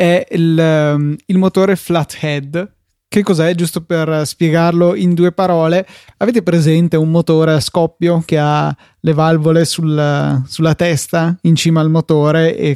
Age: 20-39